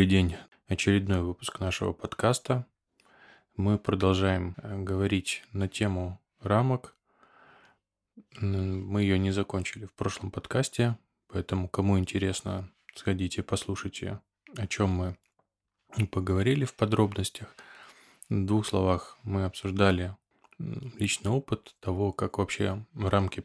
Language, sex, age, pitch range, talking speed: Russian, male, 20-39, 95-105 Hz, 100 wpm